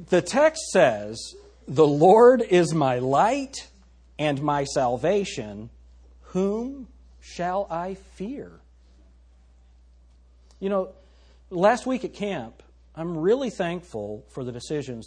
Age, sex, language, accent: 40-59, male, English, American